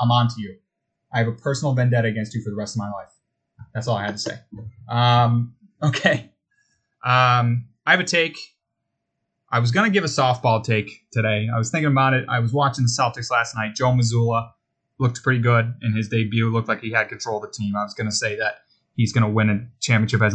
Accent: American